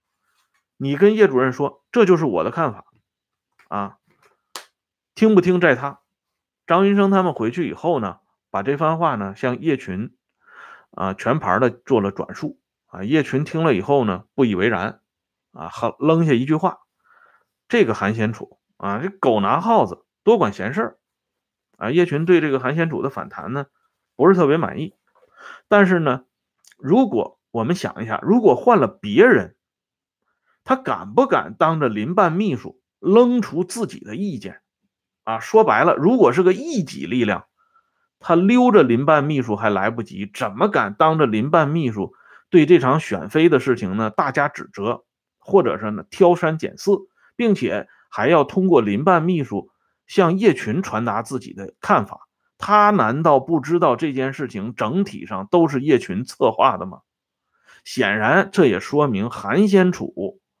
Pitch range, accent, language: 130-205 Hz, Chinese, Swedish